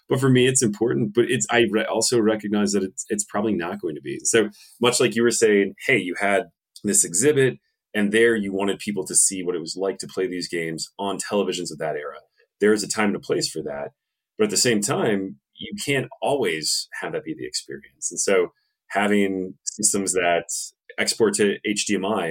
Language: English